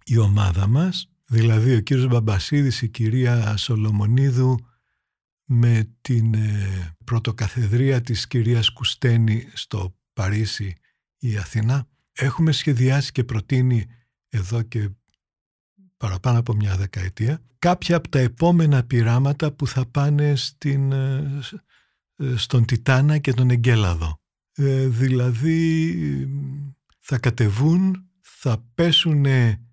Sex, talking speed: male, 110 wpm